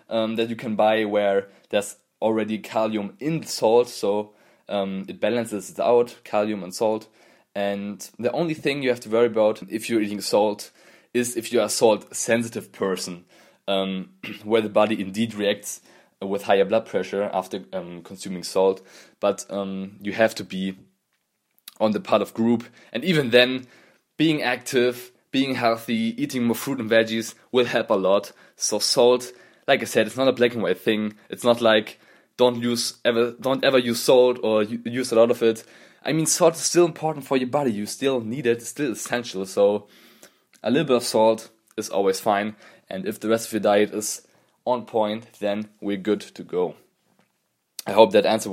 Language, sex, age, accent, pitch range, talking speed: English, male, 20-39, German, 105-120 Hz, 195 wpm